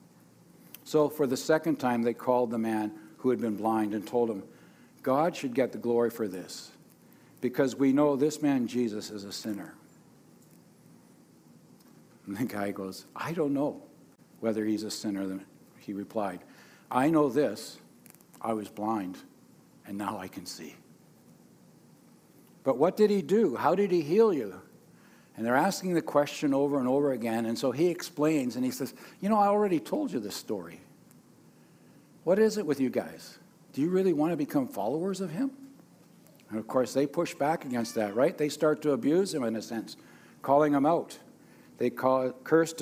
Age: 60-79